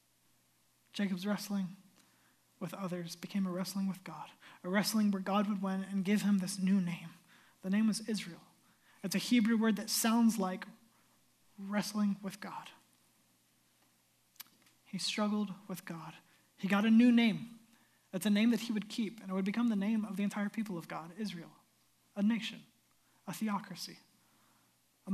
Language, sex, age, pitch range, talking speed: English, male, 20-39, 190-220 Hz, 165 wpm